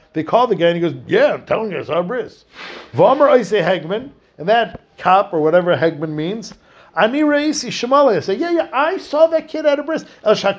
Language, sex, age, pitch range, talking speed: English, male, 50-69, 165-215 Hz, 200 wpm